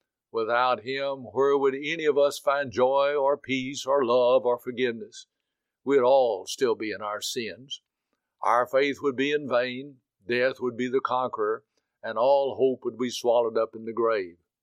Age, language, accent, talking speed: 60-79, English, American, 175 wpm